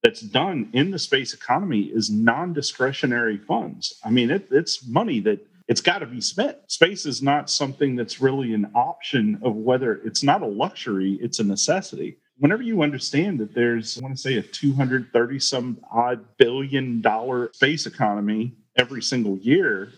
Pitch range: 110-135 Hz